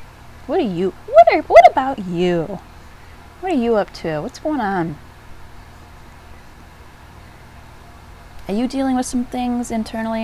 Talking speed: 135 wpm